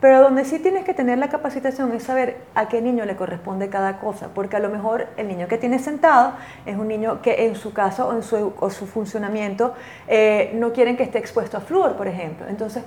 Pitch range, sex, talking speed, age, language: 210-265 Hz, female, 235 wpm, 30-49, Spanish